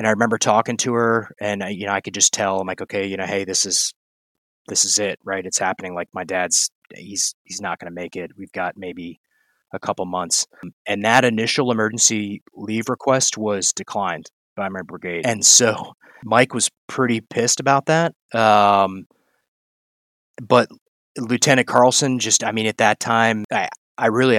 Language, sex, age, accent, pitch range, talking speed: English, male, 30-49, American, 100-120 Hz, 185 wpm